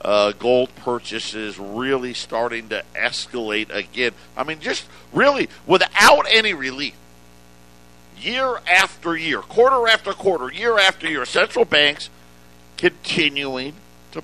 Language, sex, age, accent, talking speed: English, male, 50-69, American, 120 wpm